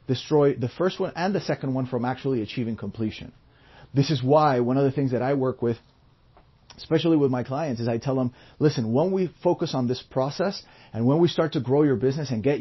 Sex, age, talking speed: male, 30-49, 230 wpm